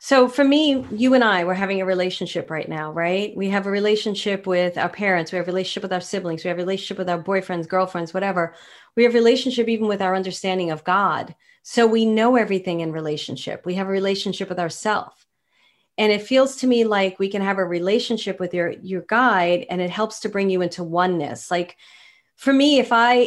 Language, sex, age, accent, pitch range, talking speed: English, female, 40-59, American, 175-215 Hz, 220 wpm